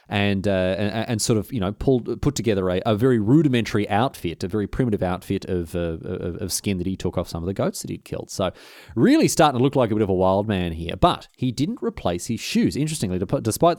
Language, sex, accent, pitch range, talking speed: English, male, Australian, 90-120 Hz, 250 wpm